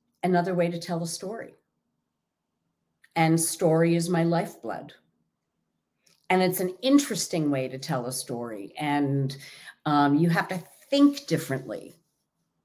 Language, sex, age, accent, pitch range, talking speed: English, female, 50-69, American, 145-185 Hz, 130 wpm